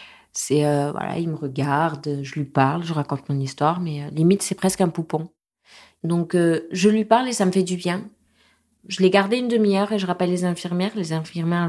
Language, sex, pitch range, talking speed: French, female, 160-195 Hz, 220 wpm